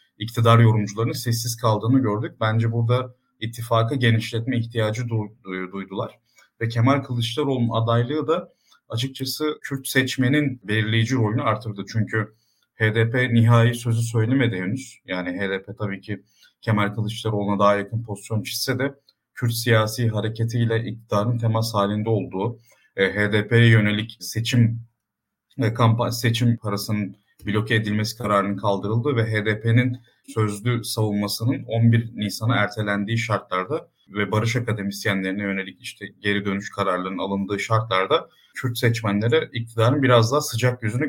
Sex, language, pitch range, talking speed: male, Turkish, 105-120 Hz, 125 wpm